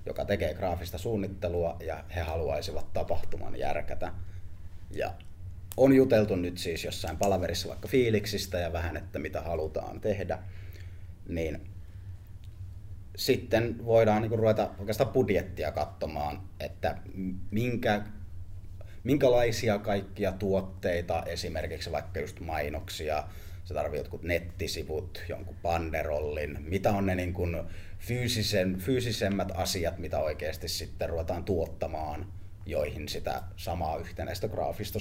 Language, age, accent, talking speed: Finnish, 30-49, native, 110 wpm